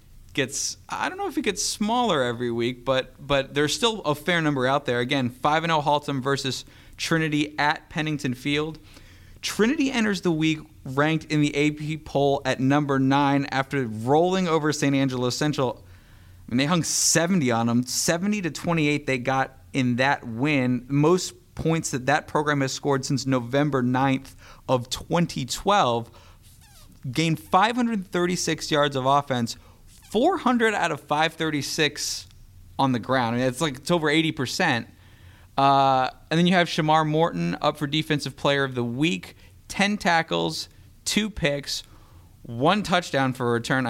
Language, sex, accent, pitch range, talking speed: English, male, American, 120-155 Hz, 160 wpm